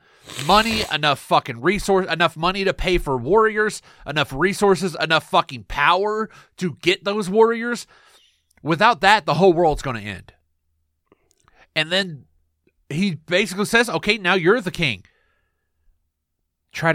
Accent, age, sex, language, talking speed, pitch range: American, 30-49, male, English, 135 wpm, 140-205 Hz